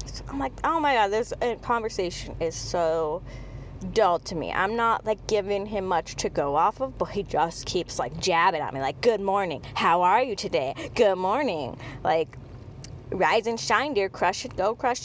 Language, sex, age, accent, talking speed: English, female, 20-39, American, 190 wpm